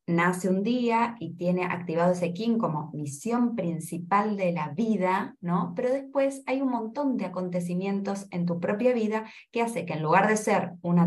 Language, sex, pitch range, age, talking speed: Spanish, female, 175-240 Hz, 20-39, 185 wpm